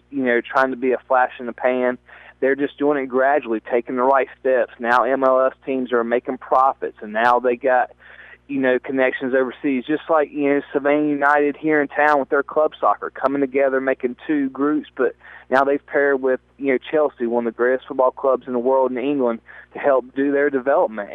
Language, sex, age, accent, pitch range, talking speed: English, male, 20-39, American, 125-145 Hz, 215 wpm